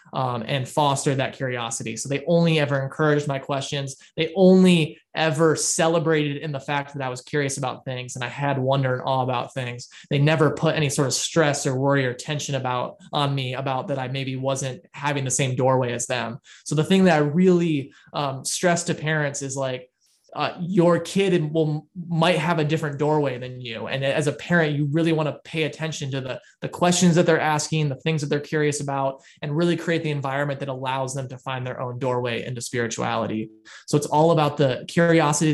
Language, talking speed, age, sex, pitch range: English, 210 wpm, 20-39, male, 135-160 Hz